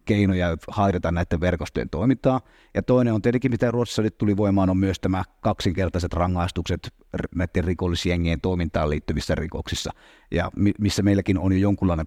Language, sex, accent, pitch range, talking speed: Finnish, male, native, 90-115 Hz, 145 wpm